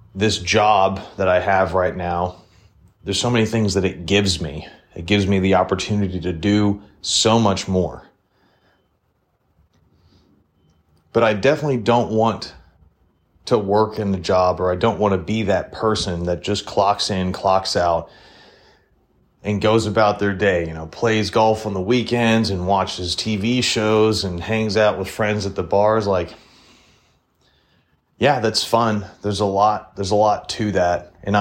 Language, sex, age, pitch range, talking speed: English, male, 30-49, 90-105 Hz, 165 wpm